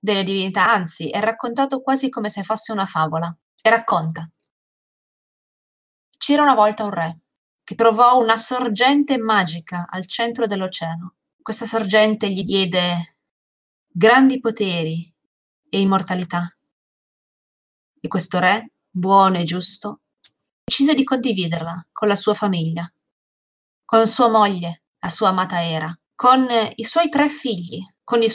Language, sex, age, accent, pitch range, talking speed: Italian, female, 20-39, native, 170-225 Hz, 130 wpm